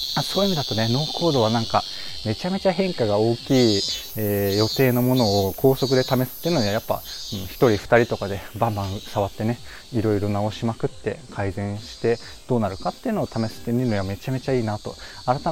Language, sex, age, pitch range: Japanese, male, 20-39, 100-125 Hz